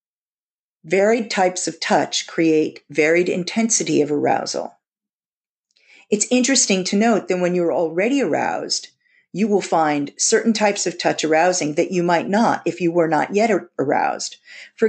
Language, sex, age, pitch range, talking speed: English, female, 50-69, 165-210 Hz, 150 wpm